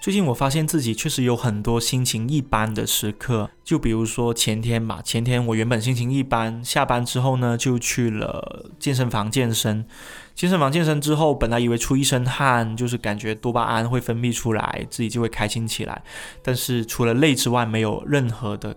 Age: 20-39